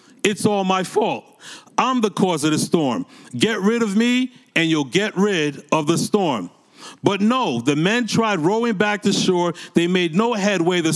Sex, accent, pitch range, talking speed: male, American, 170-225 Hz, 190 wpm